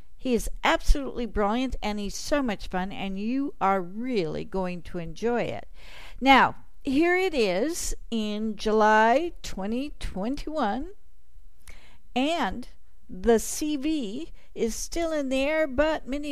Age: 50-69